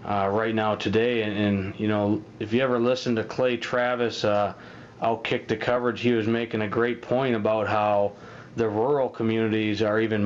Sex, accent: male, American